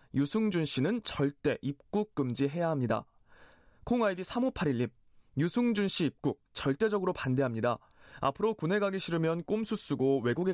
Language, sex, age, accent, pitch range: Korean, male, 20-39, native, 130-200 Hz